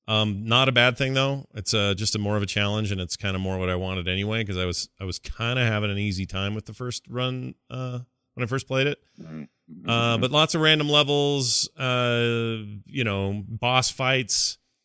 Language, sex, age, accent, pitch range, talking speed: English, male, 30-49, American, 95-130 Hz, 220 wpm